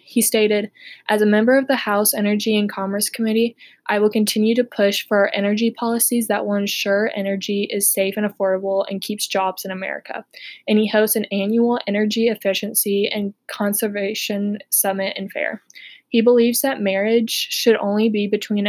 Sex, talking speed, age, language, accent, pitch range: female, 170 wpm, 20-39, English, American, 200-230 Hz